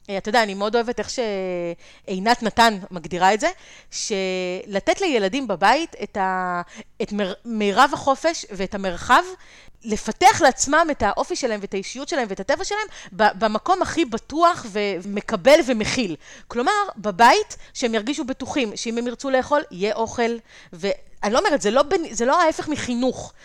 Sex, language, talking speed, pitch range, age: female, Hebrew, 145 wpm, 205-290 Hz, 30-49